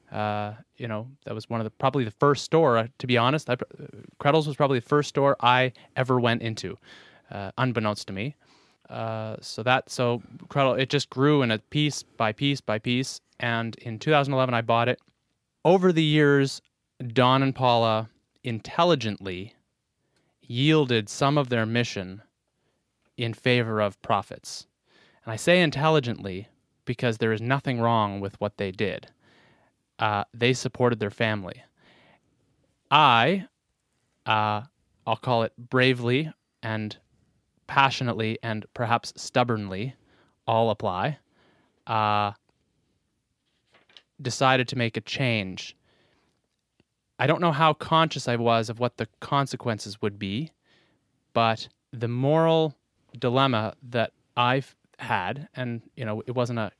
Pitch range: 110-135 Hz